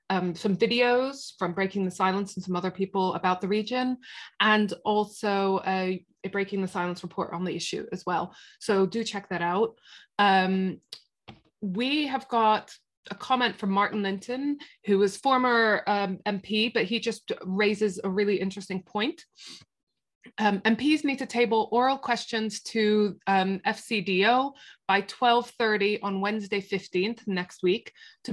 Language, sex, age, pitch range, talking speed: English, female, 20-39, 185-225 Hz, 155 wpm